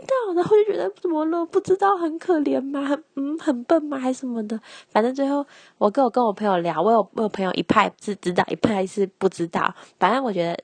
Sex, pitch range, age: female, 180-240 Hz, 20-39